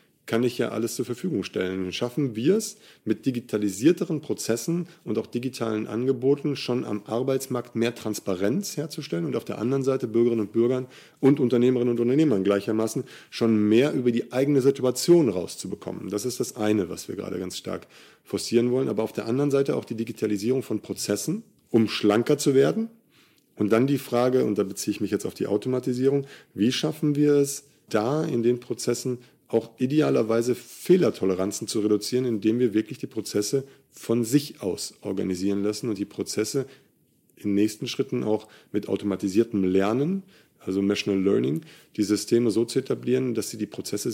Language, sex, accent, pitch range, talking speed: German, male, German, 105-135 Hz, 170 wpm